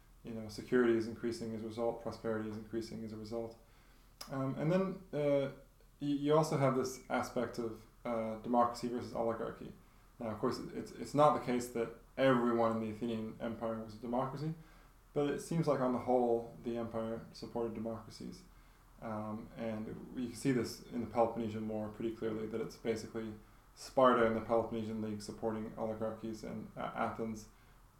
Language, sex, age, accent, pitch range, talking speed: English, male, 20-39, American, 110-120 Hz, 175 wpm